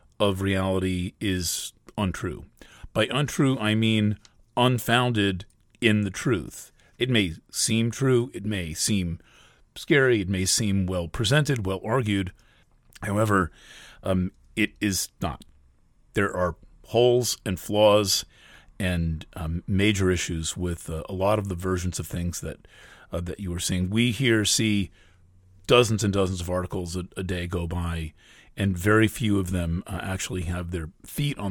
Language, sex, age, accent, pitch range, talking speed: English, male, 40-59, American, 90-110 Hz, 150 wpm